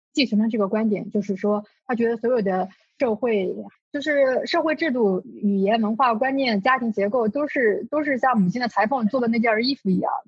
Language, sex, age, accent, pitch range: Chinese, female, 20-39, native, 210-270 Hz